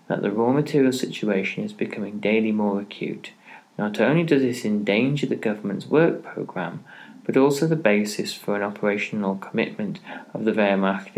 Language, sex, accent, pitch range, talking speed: English, male, British, 105-130 Hz, 160 wpm